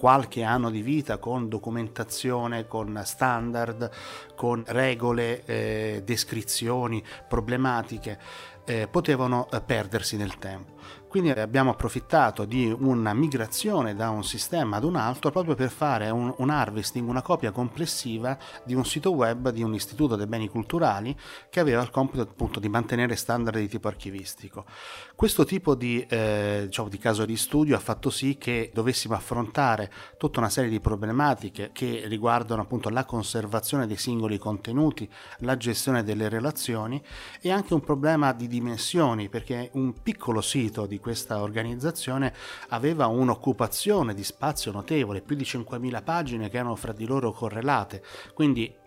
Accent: native